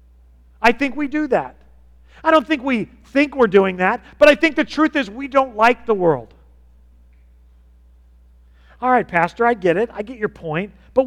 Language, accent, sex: English, American, male